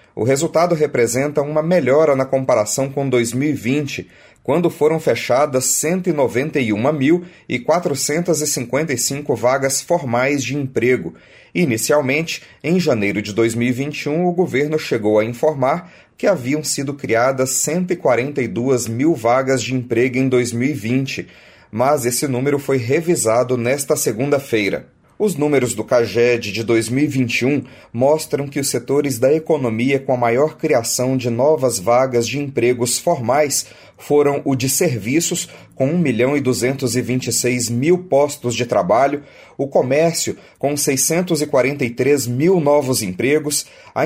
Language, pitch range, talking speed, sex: Portuguese, 125-155 Hz, 115 wpm, male